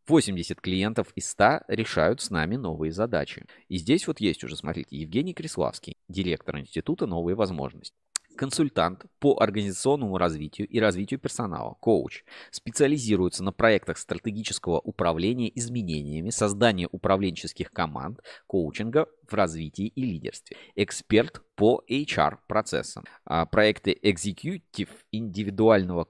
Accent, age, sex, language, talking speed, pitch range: native, 30-49, male, Russian, 115 wpm, 90-120 Hz